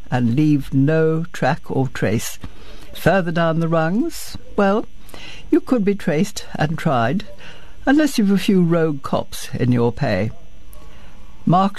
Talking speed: 135 wpm